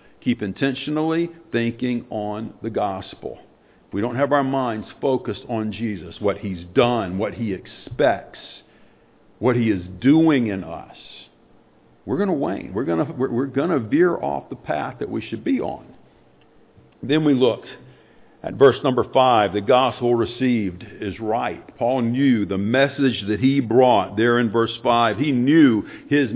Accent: American